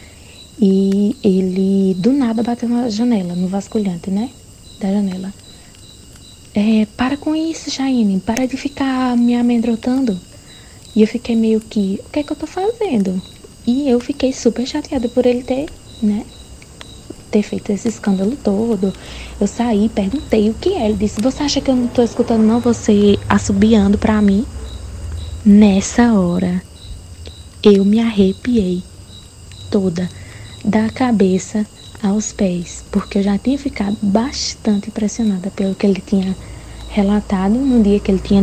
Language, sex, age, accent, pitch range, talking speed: Portuguese, female, 20-39, Brazilian, 195-235 Hz, 150 wpm